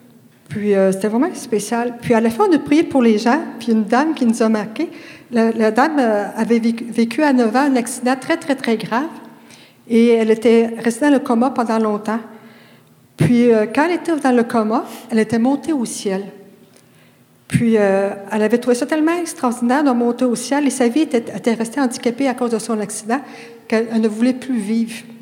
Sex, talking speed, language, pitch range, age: female, 210 wpm, French, 220-260 Hz, 50-69